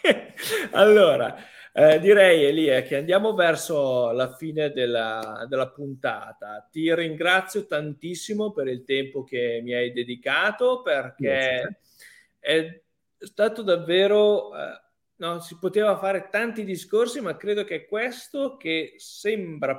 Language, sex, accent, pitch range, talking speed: Italian, male, native, 130-190 Hz, 120 wpm